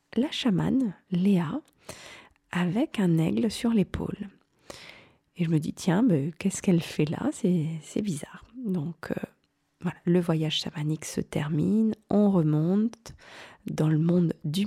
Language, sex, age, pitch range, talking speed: French, female, 40-59, 160-205 Hz, 145 wpm